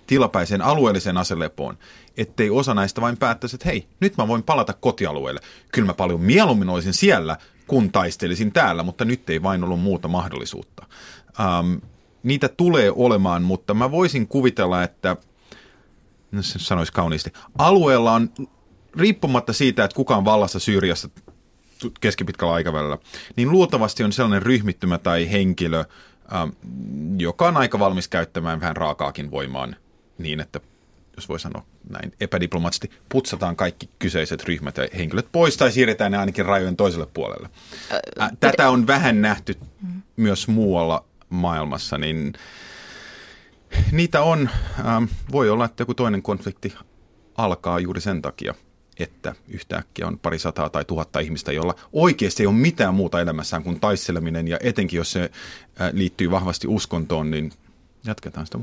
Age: 30-49